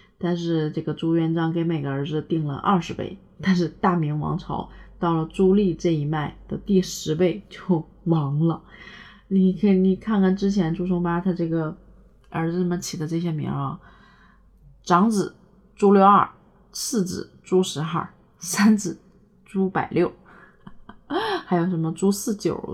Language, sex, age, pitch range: Chinese, female, 20-39, 165-190 Hz